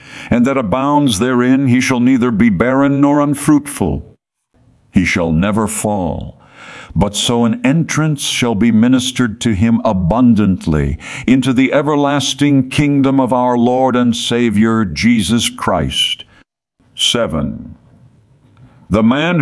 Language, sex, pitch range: English, male, 105-130 Hz